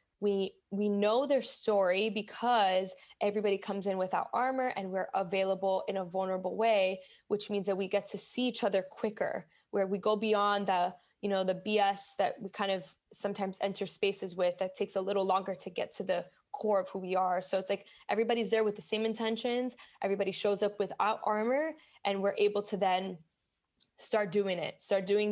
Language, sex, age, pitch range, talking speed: English, female, 10-29, 195-220 Hz, 195 wpm